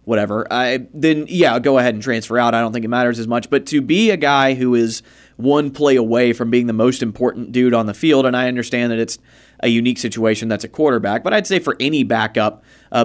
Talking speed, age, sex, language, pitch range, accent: 250 wpm, 30-49, male, English, 120-145 Hz, American